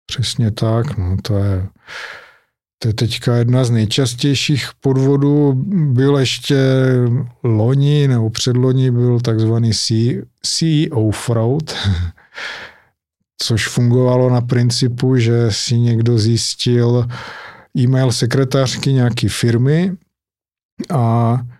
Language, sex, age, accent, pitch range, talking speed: Czech, male, 50-69, native, 115-125 Hz, 95 wpm